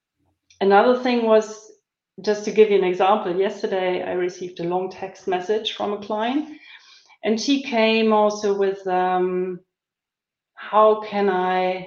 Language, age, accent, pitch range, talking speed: English, 40-59, German, 190-245 Hz, 140 wpm